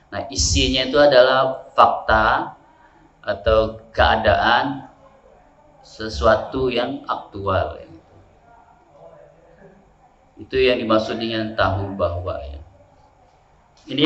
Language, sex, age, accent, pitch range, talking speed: Indonesian, male, 30-49, native, 100-130 Hz, 75 wpm